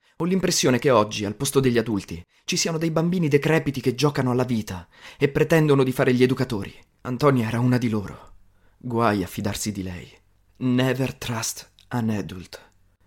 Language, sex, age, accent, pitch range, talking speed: Italian, male, 30-49, native, 100-135 Hz, 170 wpm